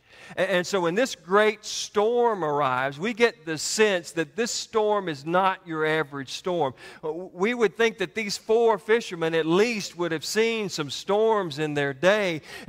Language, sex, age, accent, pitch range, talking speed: English, male, 40-59, American, 150-210 Hz, 170 wpm